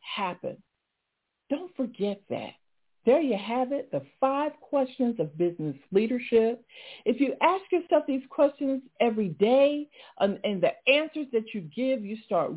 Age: 50-69